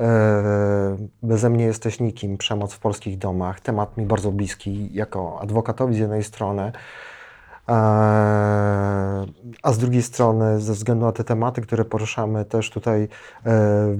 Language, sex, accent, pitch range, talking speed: Polish, male, native, 105-115 Hz, 135 wpm